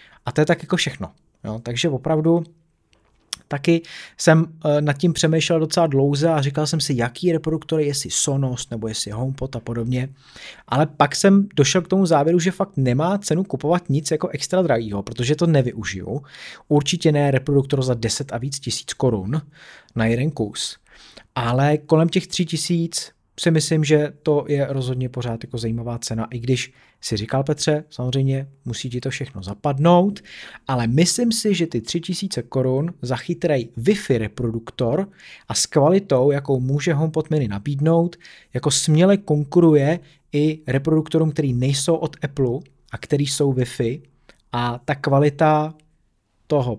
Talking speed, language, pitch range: 160 wpm, Czech, 125-160 Hz